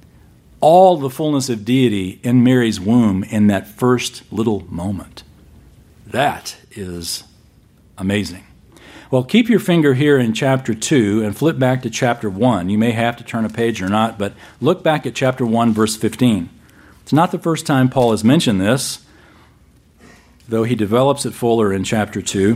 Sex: male